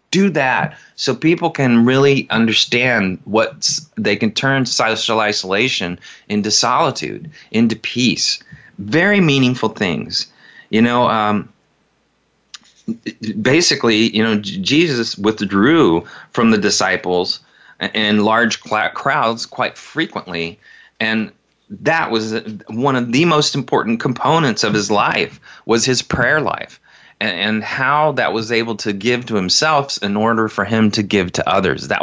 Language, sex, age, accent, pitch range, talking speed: English, male, 30-49, American, 105-130 Hz, 130 wpm